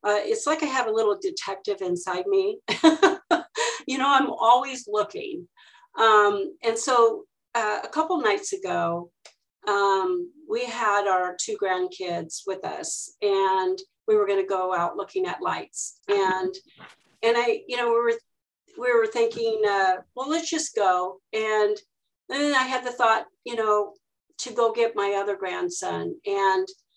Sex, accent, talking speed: female, American, 160 wpm